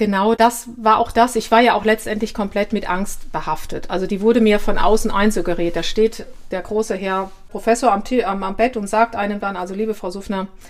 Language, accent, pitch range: German, German, 195-230 Hz